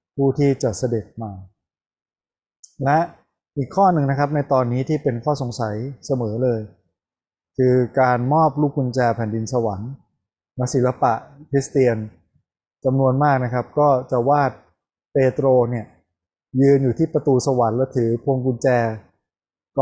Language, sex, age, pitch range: Thai, male, 20-39, 115-140 Hz